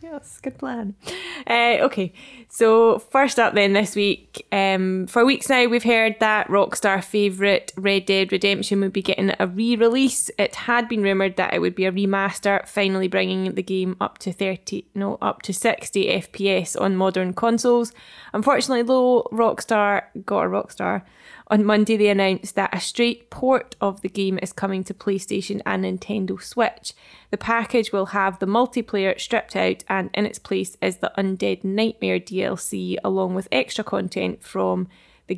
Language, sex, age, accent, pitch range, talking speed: English, female, 10-29, British, 190-230 Hz, 170 wpm